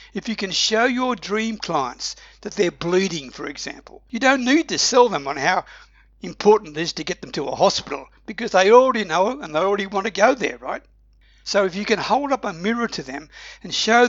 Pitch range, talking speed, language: 175-230 Hz, 230 wpm, English